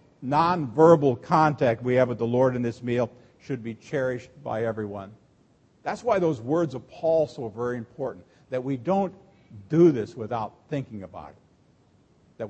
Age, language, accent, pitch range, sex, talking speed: 50-69, English, American, 120-155 Hz, male, 165 wpm